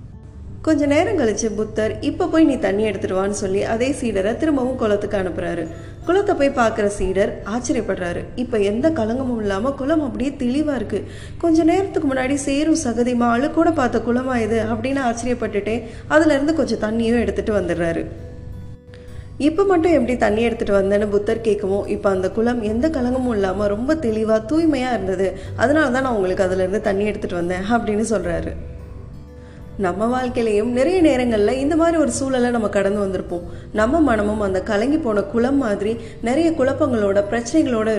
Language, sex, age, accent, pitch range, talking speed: Tamil, female, 20-39, native, 200-275 Hz, 145 wpm